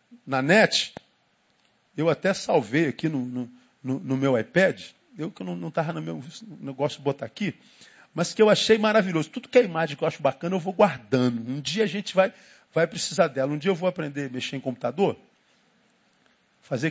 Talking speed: 200 wpm